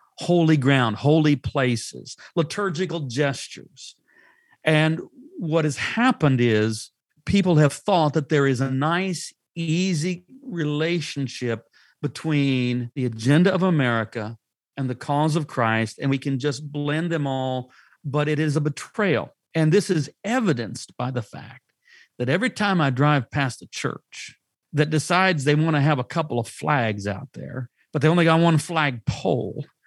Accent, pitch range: American, 125-165 Hz